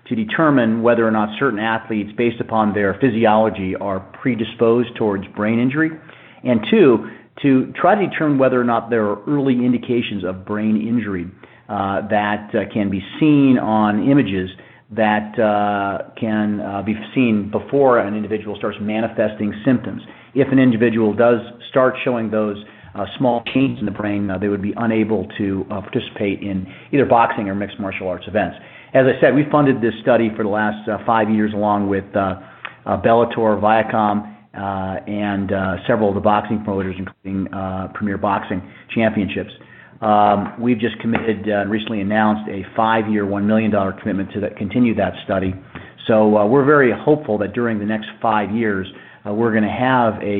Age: 40-59